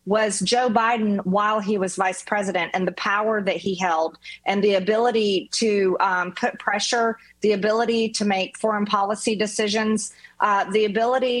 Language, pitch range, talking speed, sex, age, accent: English, 185-220 Hz, 165 wpm, female, 40-59, American